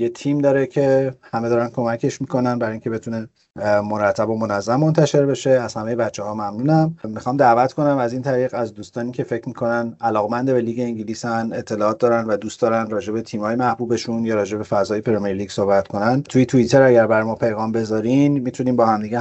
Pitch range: 115-140 Hz